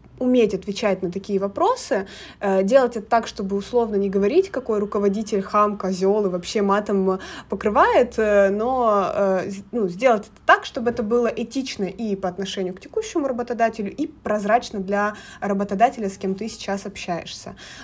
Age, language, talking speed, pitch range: 20-39, Russian, 150 wpm, 195-255 Hz